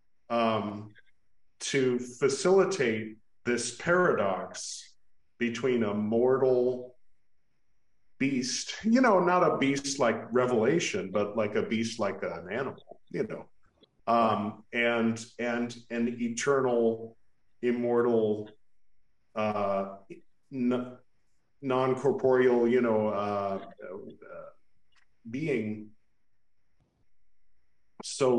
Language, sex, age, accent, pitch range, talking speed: English, male, 40-59, American, 105-125 Hz, 85 wpm